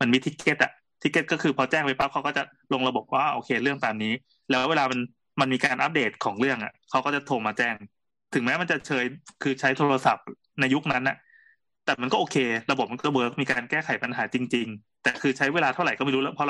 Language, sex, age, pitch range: Thai, male, 20-39, 130-175 Hz